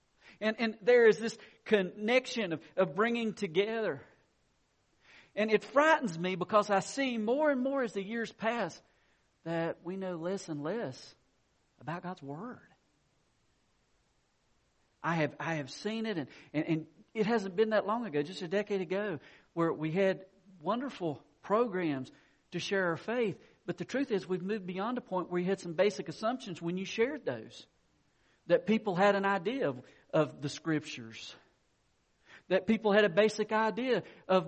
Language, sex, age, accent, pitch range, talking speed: English, male, 50-69, American, 170-230 Hz, 165 wpm